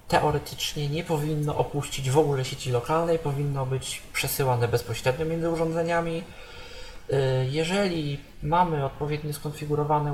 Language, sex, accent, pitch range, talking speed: Polish, male, native, 130-160 Hz, 105 wpm